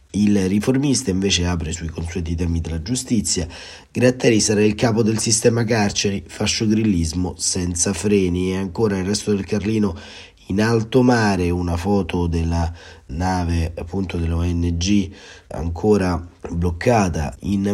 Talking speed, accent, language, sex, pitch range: 130 wpm, native, Italian, male, 85-105 Hz